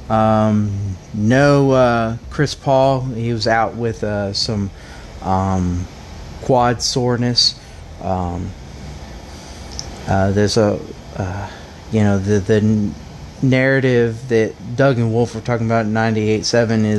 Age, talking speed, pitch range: 30-49, 115 wpm, 95-115 Hz